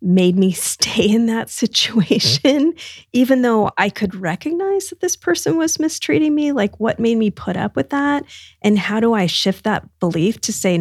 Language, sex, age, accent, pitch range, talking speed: English, female, 30-49, American, 180-230 Hz, 190 wpm